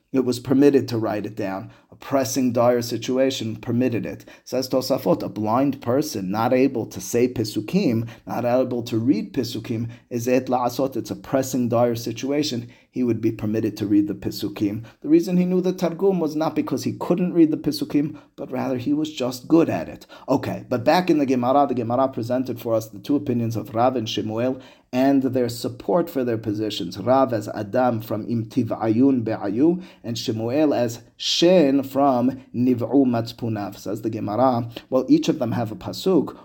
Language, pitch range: English, 115-135 Hz